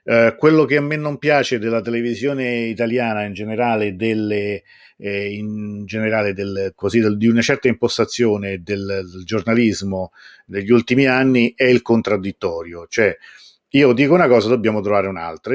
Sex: male